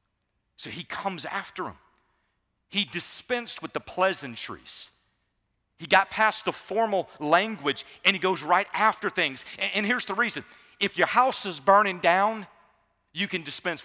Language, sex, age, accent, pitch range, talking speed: English, male, 40-59, American, 140-200 Hz, 150 wpm